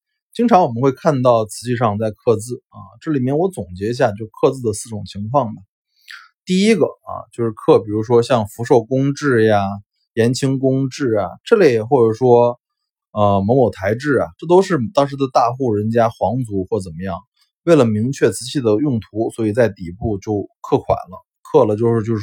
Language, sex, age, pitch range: Chinese, male, 20-39, 105-140 Hz